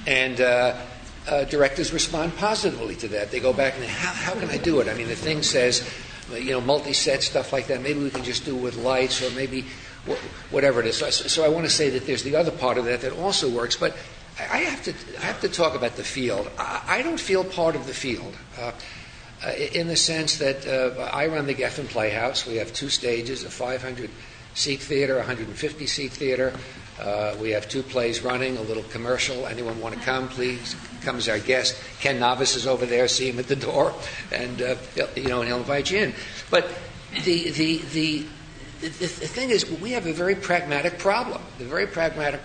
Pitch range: 125-150 Hz